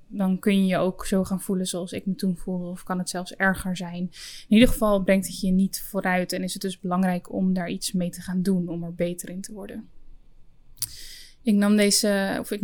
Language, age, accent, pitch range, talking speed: Dutch, 10-29, Dutch, 185-215 Hz, 225 wpm